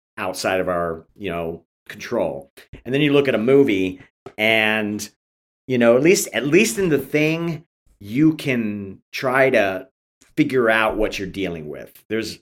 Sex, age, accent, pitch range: male, 40-59, American, 95-120 Hz